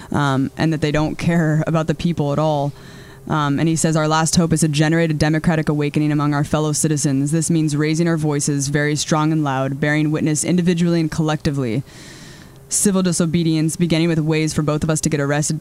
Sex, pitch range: female, 150-180 Hz